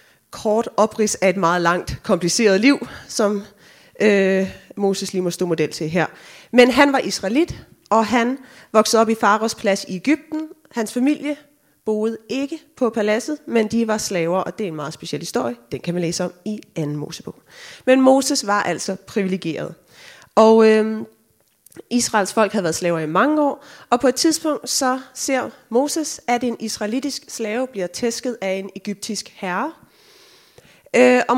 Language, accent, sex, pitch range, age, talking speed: Danish, native, female, 185-250 Hz, 30-49, 170 wpm